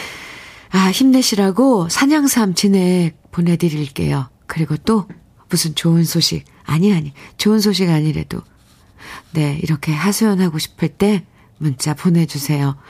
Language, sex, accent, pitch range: Korean, female, native, 150-190 Hz